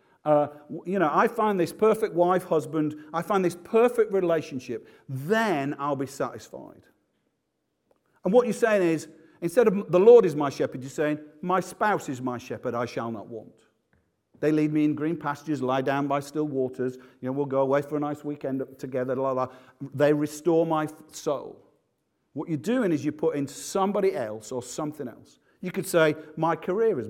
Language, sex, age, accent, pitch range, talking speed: English, male, 50-69, British, 135-190 Hz, 190 wpm